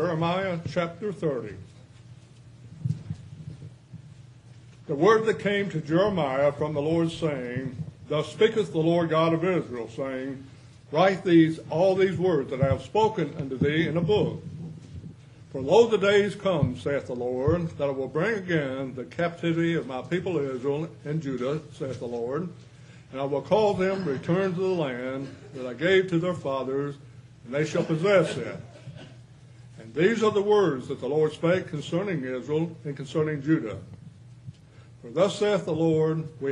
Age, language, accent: 60-79, English, American